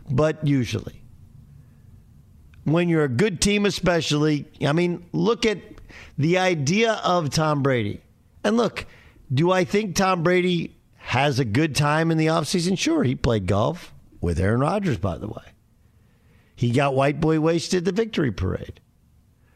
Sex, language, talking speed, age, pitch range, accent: male, English, 150 wpm, 50-69, 115-170 Hz, American